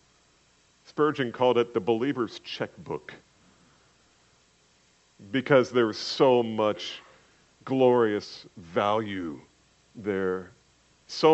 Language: English